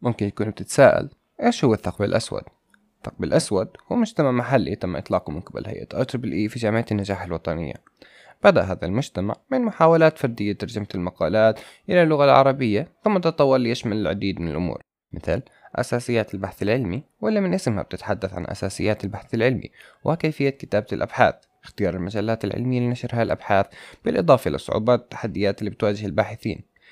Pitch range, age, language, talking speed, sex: 100-140 Hz, 20-39, Arabic, 145 wpm, male